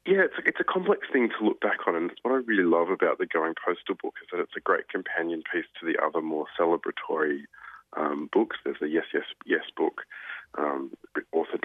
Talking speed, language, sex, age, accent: 215 wpm, English, male, 20-39, Australian